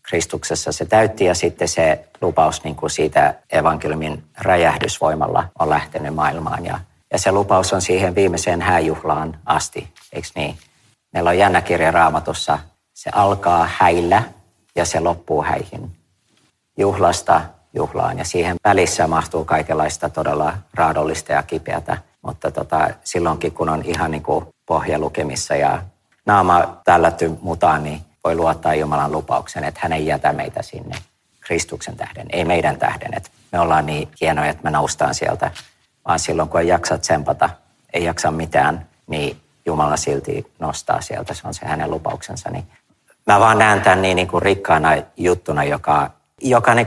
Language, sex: Finnish, male